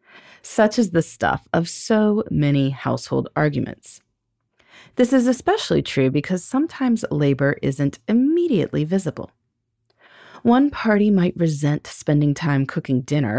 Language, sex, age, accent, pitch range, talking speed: English, female, 30-49, American, 125-200 Hz, 120 wpm